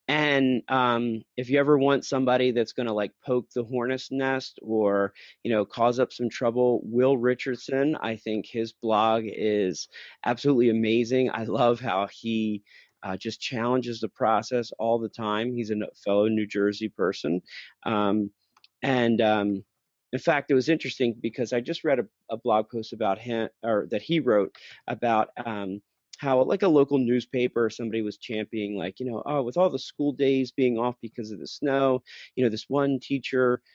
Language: English